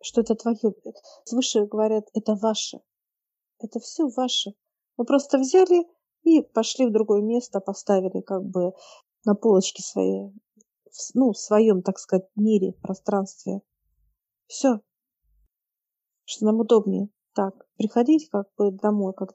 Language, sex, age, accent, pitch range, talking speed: Russian, female, 50-69, native, 200-245 Hz, 130 wpm